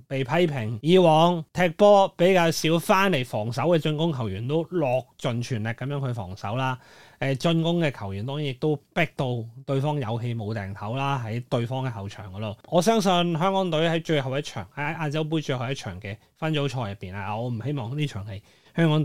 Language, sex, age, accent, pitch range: Chinese, male, 20-39, native, 120-160 Hz